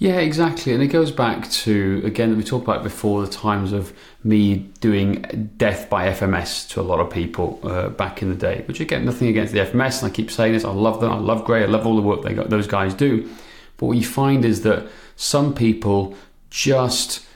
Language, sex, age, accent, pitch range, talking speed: English, male, 30-49, British, 105-125 Hz, 235 wpm